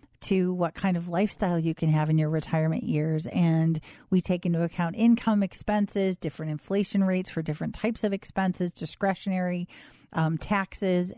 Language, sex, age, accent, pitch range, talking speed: English, female, 40-59, American, 165-200 Hz, 160 wpm